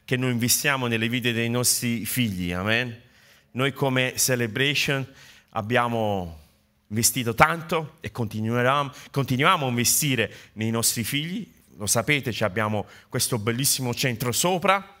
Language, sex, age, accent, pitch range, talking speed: Italian, male, 30-49, native, 115-140 Hz, 115 wpm